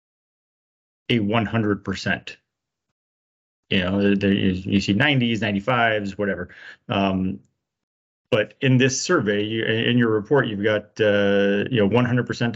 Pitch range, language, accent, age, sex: 100-115 Hz, English, American, 30-49, male